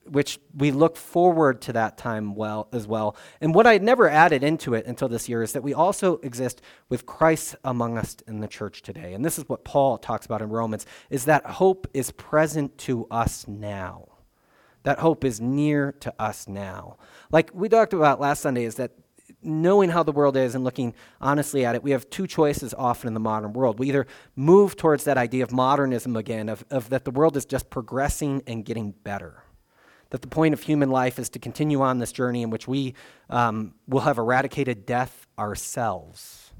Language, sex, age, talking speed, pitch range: English, male, 30-49, 205 wpm, 115-145 Hz